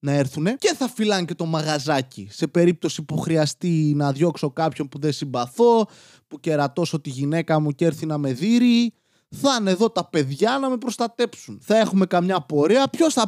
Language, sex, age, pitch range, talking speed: Greek, male, 20-39, 140-220 Hz, 190 wpm